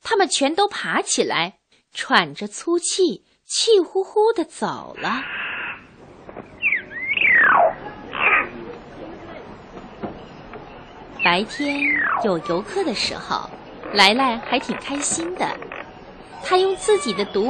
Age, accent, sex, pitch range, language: 30-49, native, female, 200-335 Hz, Chinese